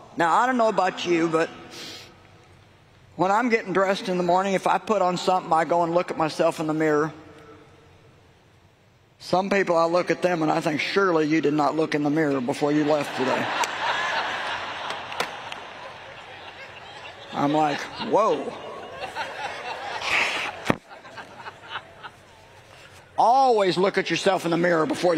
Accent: American